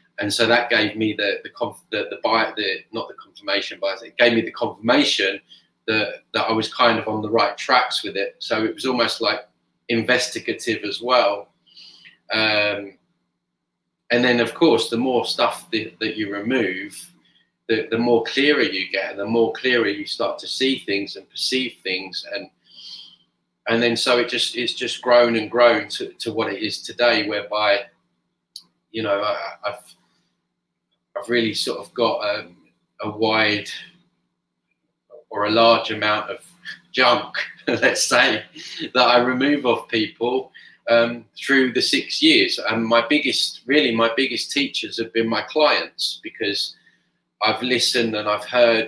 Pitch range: 105-120 Hz